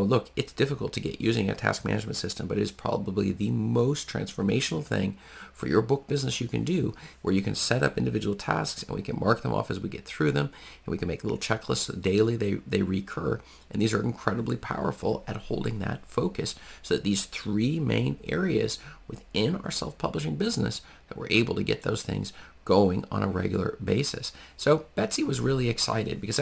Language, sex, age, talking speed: English, male, 40-59, 205 wpm